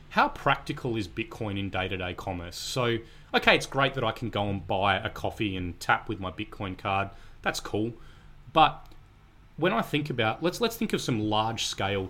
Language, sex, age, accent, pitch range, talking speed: English, male, 30-49, Australian, 100-135 Hz, 195 wpm